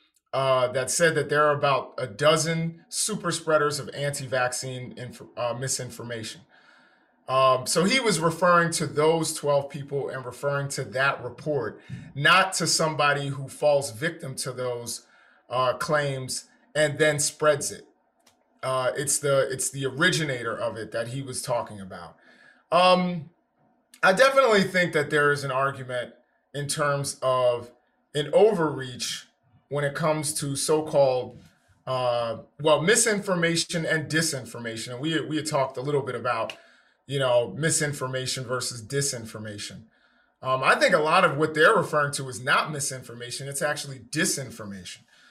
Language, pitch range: English, 130-160 Hz